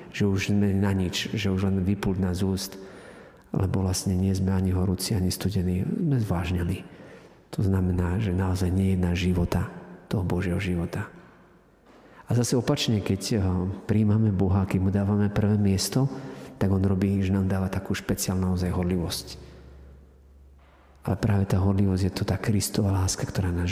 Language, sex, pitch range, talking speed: Slovak, male, 90-100 Hz, 160 wpm